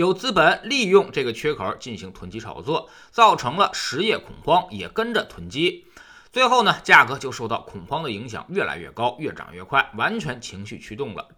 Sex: male